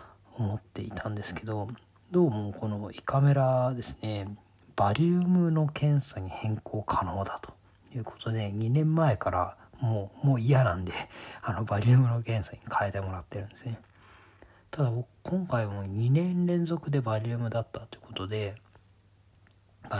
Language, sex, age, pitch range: Japanese, male, 40-59, 100-130 Hz